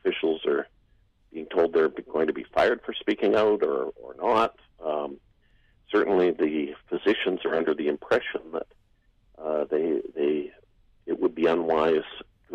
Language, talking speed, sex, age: English, 155 wpm, male, 50-69